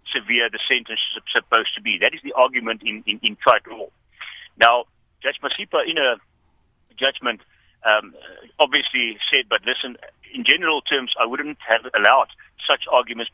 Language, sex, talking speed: English, male, 160 wpm